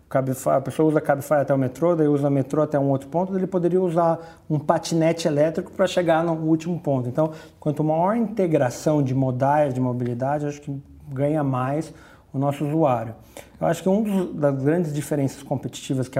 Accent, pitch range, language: Brazilian, 140-165 Hz, Portuguese